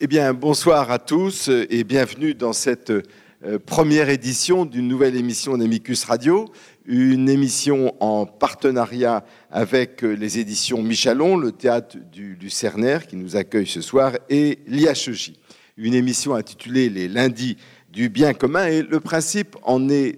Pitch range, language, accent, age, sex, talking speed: 120-160 Hz, French, French, 50-69, male, 150 wpm